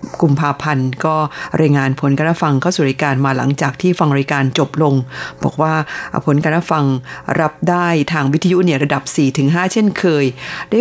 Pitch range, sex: 140-175 Hz, female